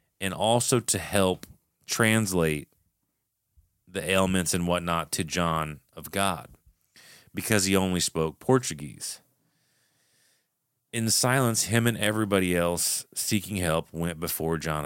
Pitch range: 85-100 Hz